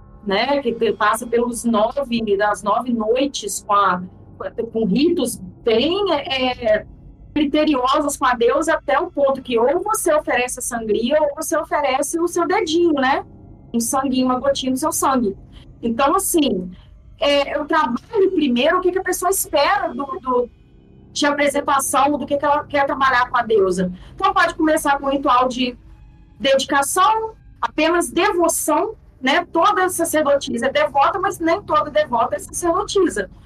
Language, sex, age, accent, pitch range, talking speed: Portuguese, female, 40-59, Brazilian, 245-315 Hz, 145 wpm